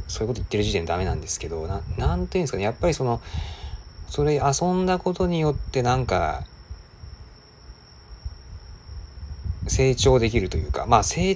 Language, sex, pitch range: Japanese, male, 85-110 Hz